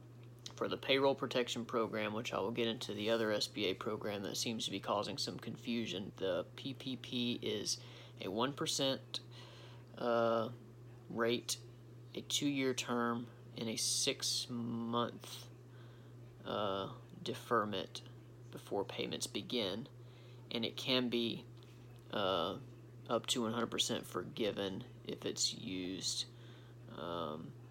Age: 30-49